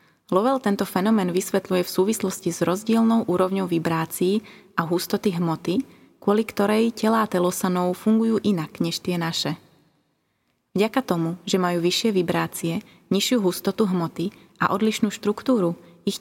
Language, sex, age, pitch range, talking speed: Slovak, female, 20-39, 170-205 Hz, 130 wpm